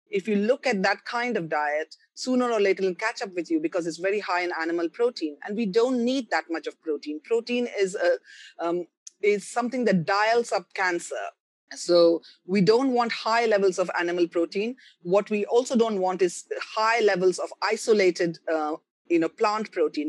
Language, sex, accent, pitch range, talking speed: English, female, Indian, 170-225 Hz, 195 wpm